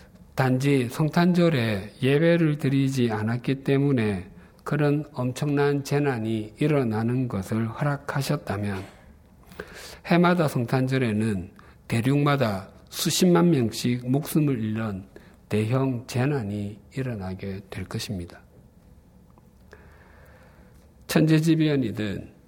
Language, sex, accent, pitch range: Korean, male, native, 105-140 Hz